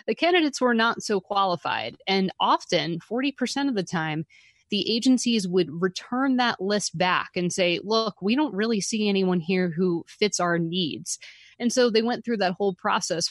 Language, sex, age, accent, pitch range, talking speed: English, female, 20-39, American, 180-225 Hz, 180 wpm